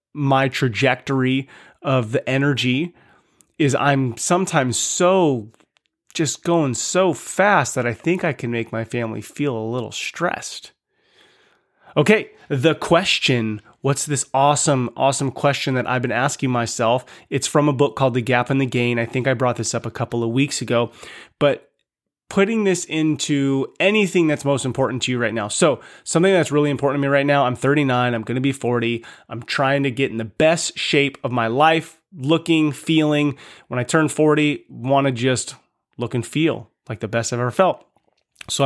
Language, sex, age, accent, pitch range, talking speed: English, male, 20-39, American, 125-155 Hz, 180 wpm